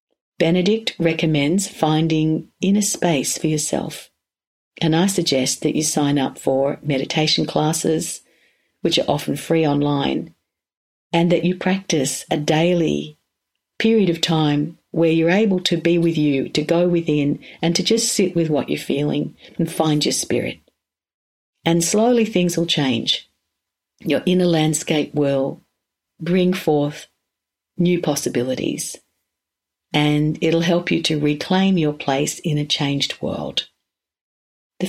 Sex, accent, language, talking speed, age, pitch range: female, Australian, English, 135 wpm, 50-69, 145-170 Hz